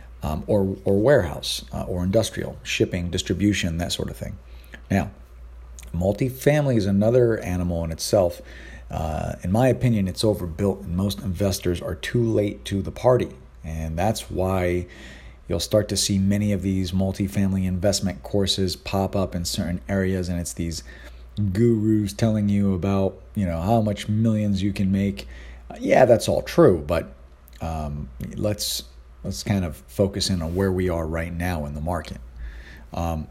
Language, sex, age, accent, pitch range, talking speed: English, male, 40-59, American, 80-105 Hz, 165 wpm